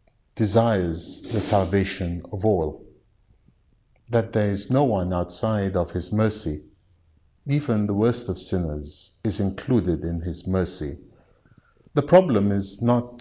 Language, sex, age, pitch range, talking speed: English, male, 50-69, 90-115 Hz, 125 wpm